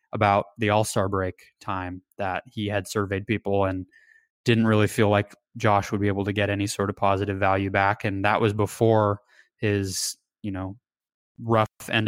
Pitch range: 100-115 Hz